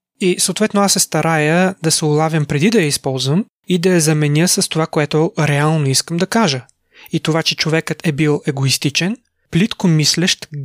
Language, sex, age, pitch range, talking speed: Bulgarian, male, 30-49, 150-175 Hz, 180 wpm